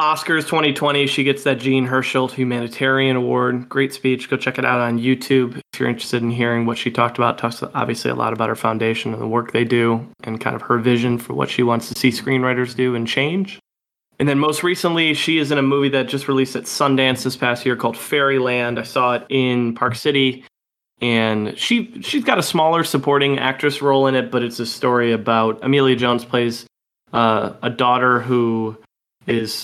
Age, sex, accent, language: 20-39, male, American, English